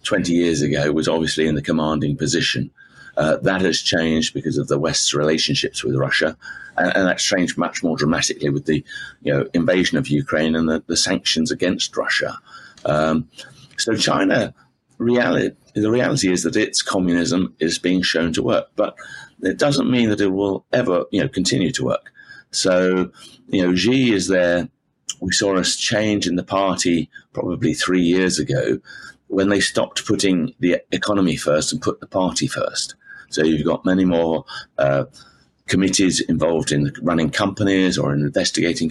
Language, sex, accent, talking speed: English, male, British, 170 wpm